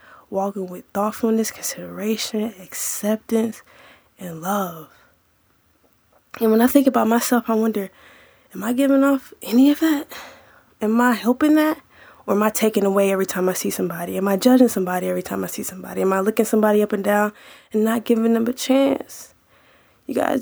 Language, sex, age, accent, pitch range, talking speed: English, female, 20-39, American, 205-245 Hz, 175 wpm